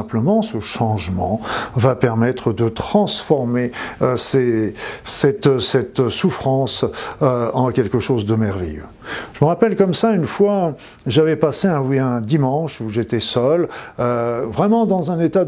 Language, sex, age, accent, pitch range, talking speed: French, male, 50-69, French, 115-165 Hz, 145 wpm